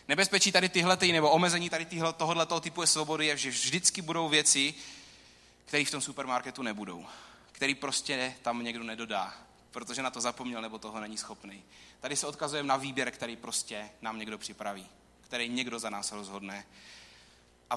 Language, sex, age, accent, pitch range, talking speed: Czech, male, 20-39, native, 120-160 Hz, 160 wpm